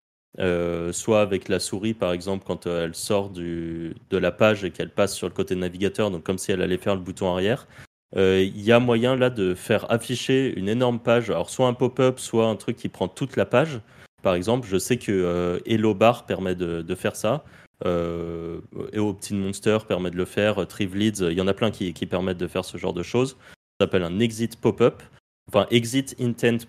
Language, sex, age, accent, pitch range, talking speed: French, male, 30-49, French, 95-120 Hz, 230 wpm